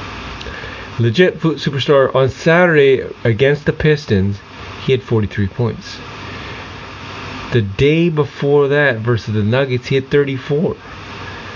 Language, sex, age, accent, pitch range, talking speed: English, male, 30-49, American, 105-140 Hz, 115 wpm